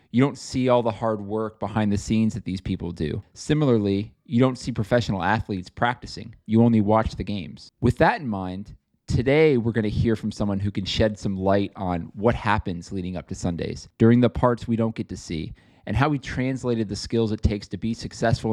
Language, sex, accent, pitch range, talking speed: English, male, American, 100-115 Hz, 220 wpm